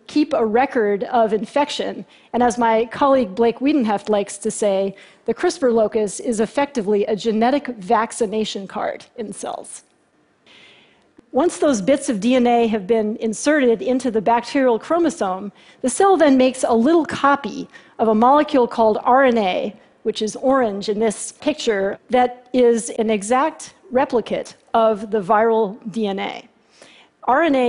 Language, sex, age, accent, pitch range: Chinese, female, 40-59, American, 220-265 Hz